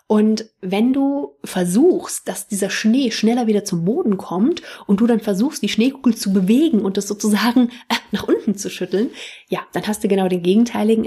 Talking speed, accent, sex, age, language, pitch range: 185 wpm, German, female, 30-49, German, 190-225 Hz